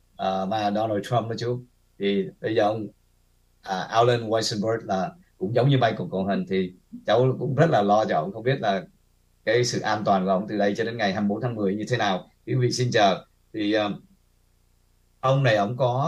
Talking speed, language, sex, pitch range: 215 wpm, Vietnamese, male, 95-125 Hz